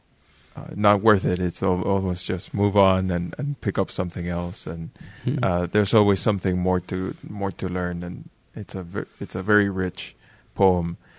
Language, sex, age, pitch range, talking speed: English, male, 20-39, 95-110 Hz, 190 wpm